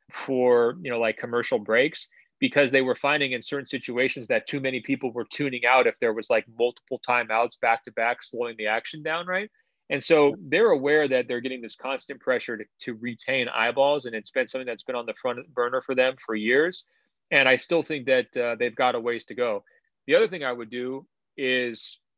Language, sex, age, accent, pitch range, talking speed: English, male, 30-49, American, 120-135 Hz, 220 wpm